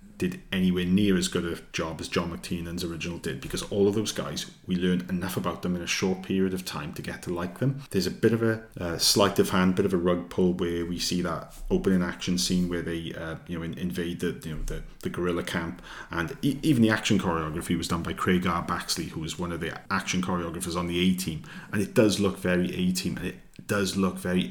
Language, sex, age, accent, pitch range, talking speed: English, male, 30-49, British, 90-95 Hz, 250 wpm